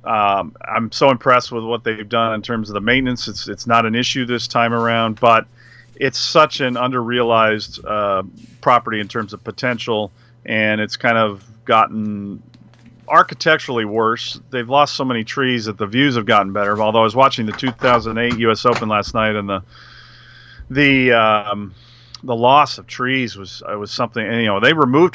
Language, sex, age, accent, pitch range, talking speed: English, male, 40-59, American, 110-125 Hz, 185 wpm